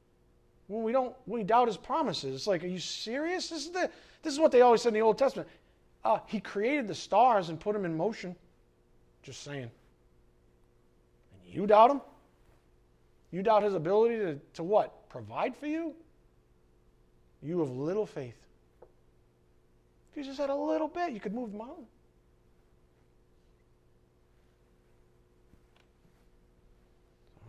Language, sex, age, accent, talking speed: English, male, 40-59, American, 150 wpm